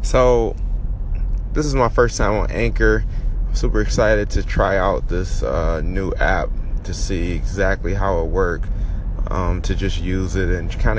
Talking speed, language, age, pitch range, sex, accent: 170 wpm, English, 20-39, 85-100 Hz, male, American